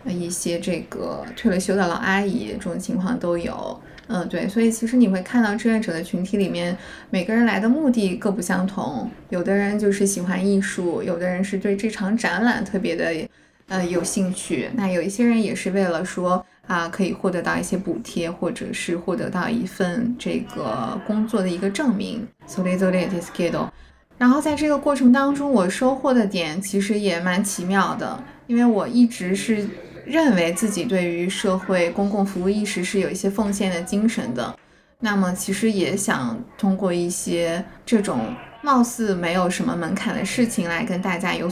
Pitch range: 185-225 Hz